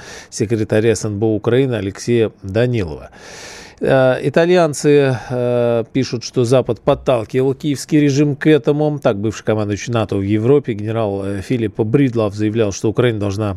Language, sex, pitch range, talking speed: Russian, male, 105-130 Hz, 120 wpm